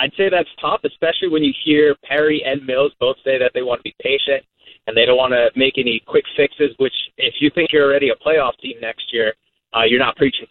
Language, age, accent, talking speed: English, 30-49, American, 245 wpm